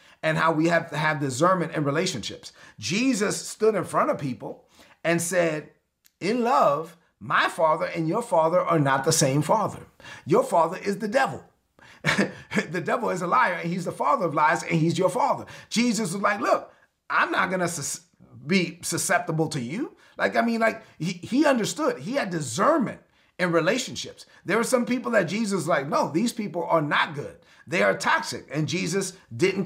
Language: English